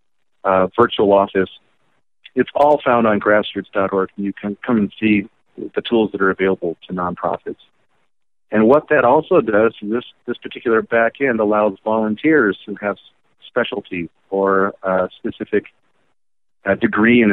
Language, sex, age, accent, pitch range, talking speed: English, male, 50-69, American, 95-110 Hz, 145 wpm